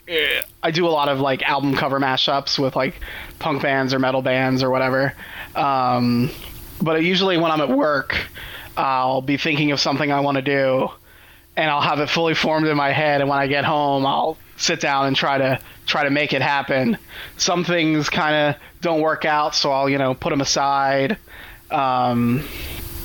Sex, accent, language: male, American, English